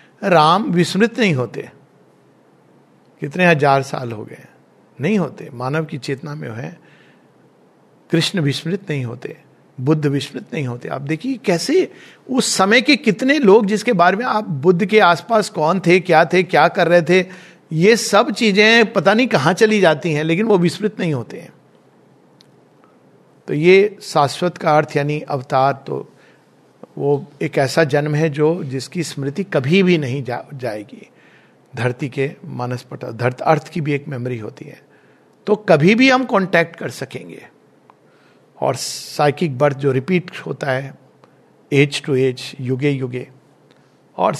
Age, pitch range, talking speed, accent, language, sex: 50-69, 140-185 Hz, 150 wpm, Indian, English, male